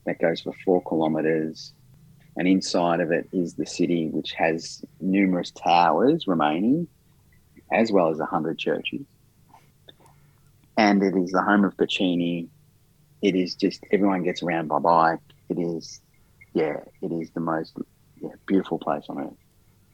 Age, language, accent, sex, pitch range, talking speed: 30-49, English, Australian, male, 85-105 Hz, 145 wpm